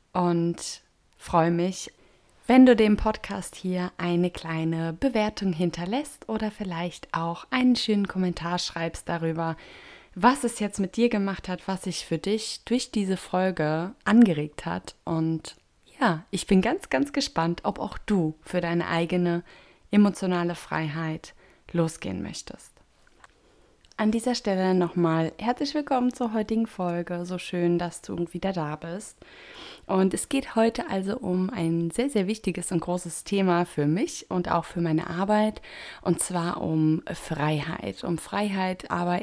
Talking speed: 145 wpm